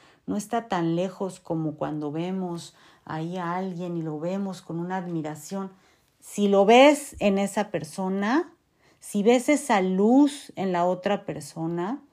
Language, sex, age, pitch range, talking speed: Spanish, female, 40-59, 155-200 Hz, 150 wpm